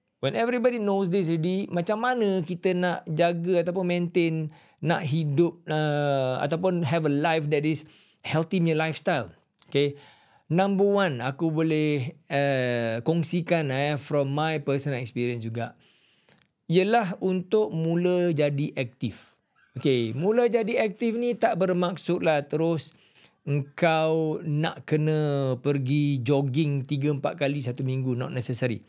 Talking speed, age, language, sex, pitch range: 125 wpm, 40-59, Malay, male, 135-170 Hz